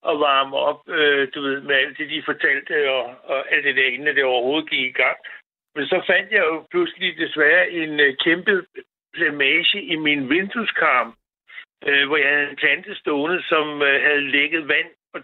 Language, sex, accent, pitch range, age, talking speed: Danish, male, native, 145-190 Hz, 60-79, 195 wpm